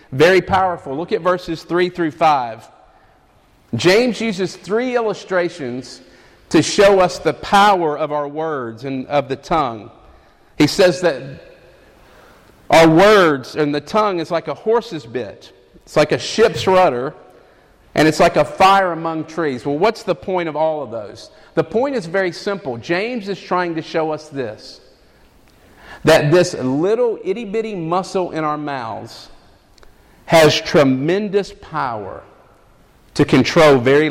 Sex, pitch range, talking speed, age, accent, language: male, 145-190 Hz, 145 wpm, 50-69, American, English